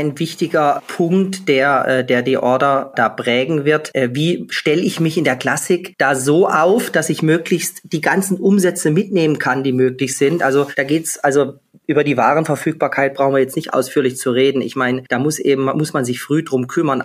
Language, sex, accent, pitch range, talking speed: German, male, German, 135-165 Hz, 195 wpm